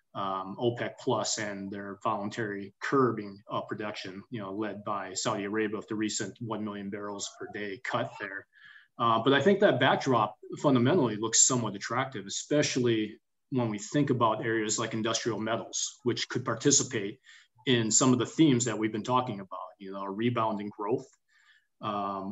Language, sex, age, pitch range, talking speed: English, male, 30-49, 105-125 Hz, 170 wpm